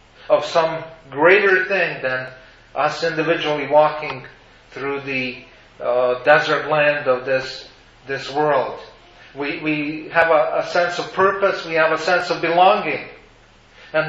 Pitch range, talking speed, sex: 150-175 Hz, 135 wpm, male